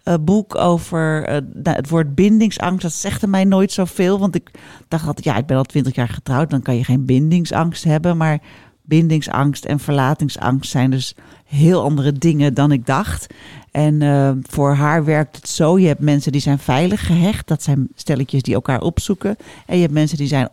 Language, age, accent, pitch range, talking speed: Dutch, 40-59, Dutch, 140-175 Hz, 195 wpm